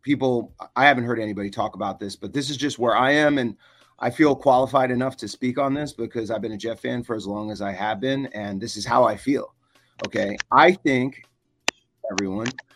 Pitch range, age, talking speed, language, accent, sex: 115-150 Hz, 30-49, 220 wpm, English, American, male